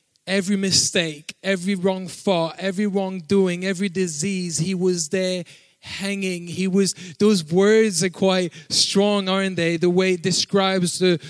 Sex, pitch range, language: male, 170-200 Hz, English